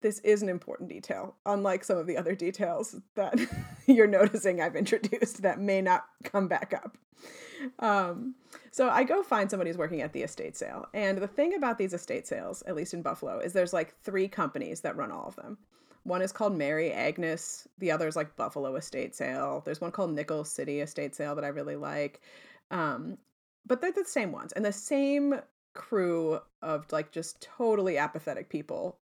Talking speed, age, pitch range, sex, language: 195 wpm, 30-49, 155-205 Hz, female, English